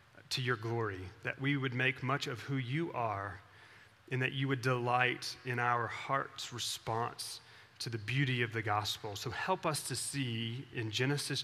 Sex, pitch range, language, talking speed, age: male, 115-140 Hz, English, 180 wpm, 30-49